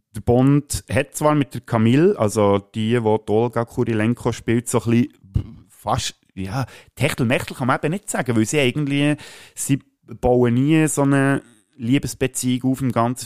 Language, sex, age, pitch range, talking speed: German, male, 30-49, 95-125 Hz, 170 wpm